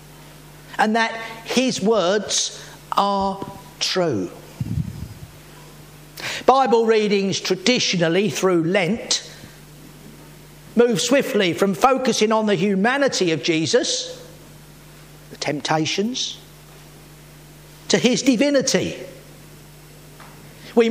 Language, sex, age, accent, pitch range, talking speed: English, male, 50-69, British, 175-235 Hz, 75 wpm